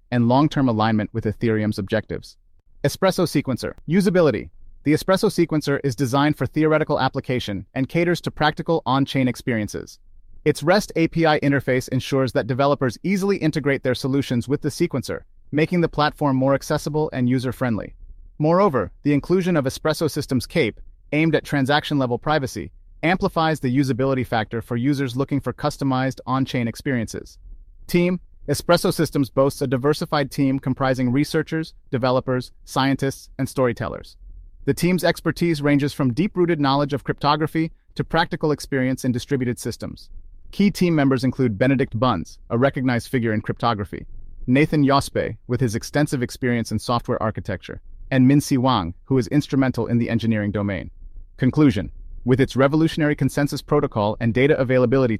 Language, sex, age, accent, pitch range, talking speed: English, male, 30-49, American, 120-150 Hz, 145 wpm